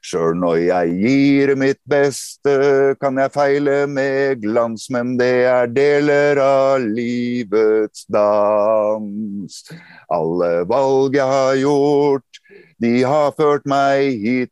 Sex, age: male, 50-69